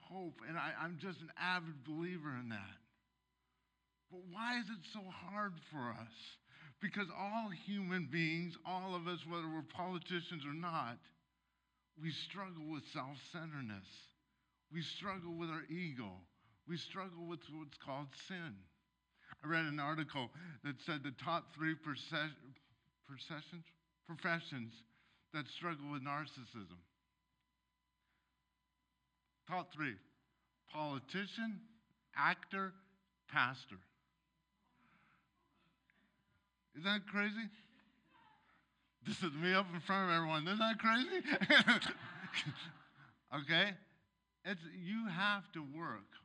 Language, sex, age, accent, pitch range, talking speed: English, male, 50-69, American, 125-180 Hz, 110 wpm